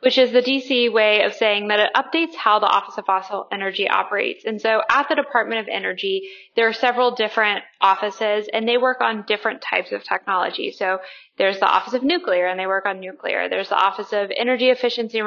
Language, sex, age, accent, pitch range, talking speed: English, female, 10-29, American, 200-245 Hz, 215 wpm